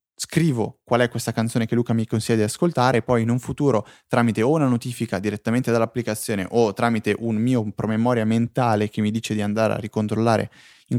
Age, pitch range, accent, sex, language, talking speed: 20-39, 110-130 Hz, native, male, Italian, 190 wpm